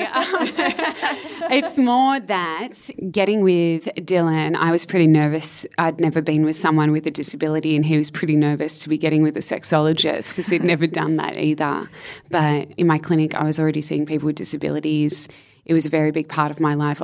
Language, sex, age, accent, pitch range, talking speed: English, female, 20-39, Australian, 150-165 Hz, 195 wpm